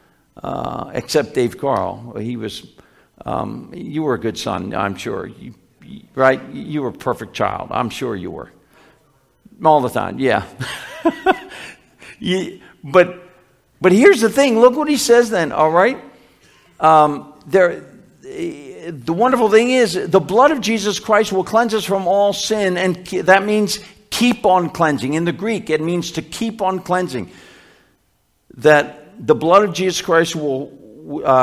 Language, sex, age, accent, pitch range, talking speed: English, male, 60-79, American, 150-205 Hz, 160 wpm